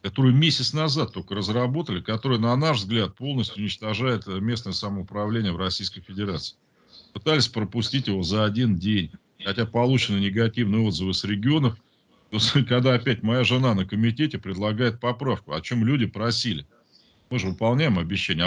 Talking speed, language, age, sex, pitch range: 145 wpm, Russian, 40-59, male, 100-130 Hz